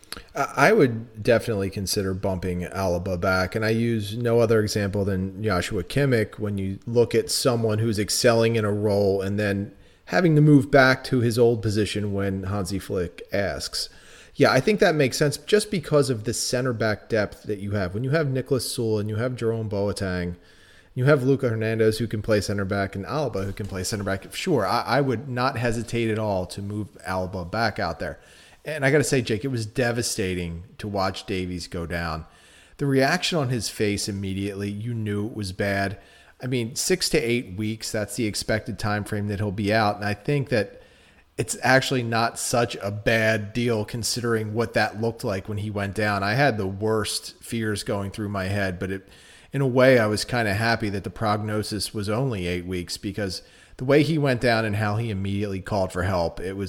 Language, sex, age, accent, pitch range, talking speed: English, male, 30-49, American, 100-120 Hz, 205 wpm